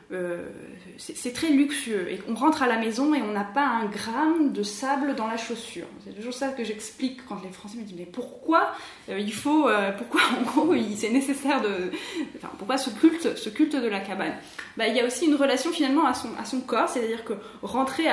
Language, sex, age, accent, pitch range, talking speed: French, female, 20-39, French, 200-270 Hz, 230 wpm